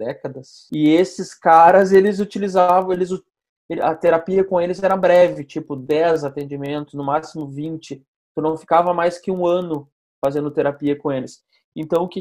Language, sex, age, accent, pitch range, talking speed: Portuguese, male, 20-39, Brazilian, 145-185 Hz, 160 wpm